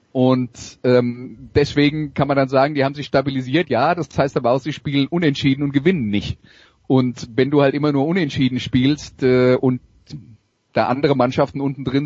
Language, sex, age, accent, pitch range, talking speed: German, male, 30-49, German, 115-140 Hz, 185 wpm